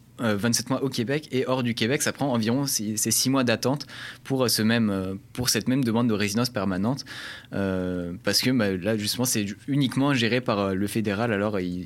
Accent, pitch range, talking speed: French, 105-125 Hz, 190 wpm